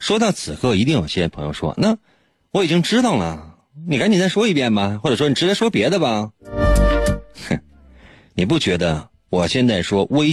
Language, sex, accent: Chinese, male, native